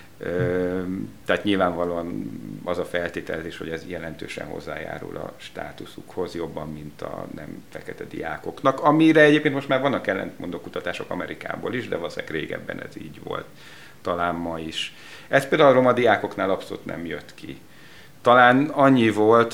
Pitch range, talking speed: 85-105 Hz, 145 wpm